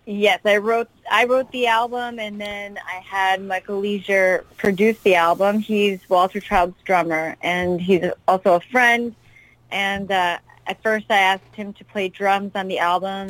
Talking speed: 170 wpm